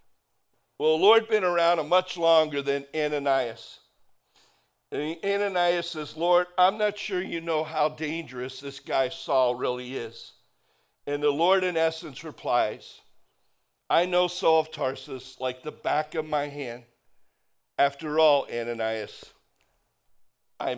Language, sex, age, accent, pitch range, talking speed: English, male, 60-79, American, 135-175 Hz, 140 wpm